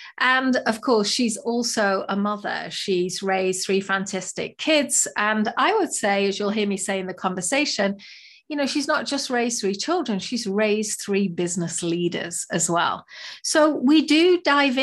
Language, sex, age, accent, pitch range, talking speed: English, female, 40-59, British, 190-255 Hz, 175 wpm